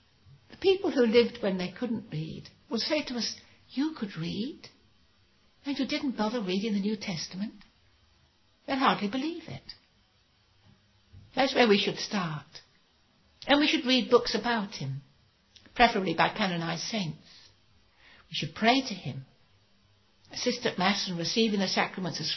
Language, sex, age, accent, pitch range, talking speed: English, female, 60-79, British, 145-230 Hz, 155 wpm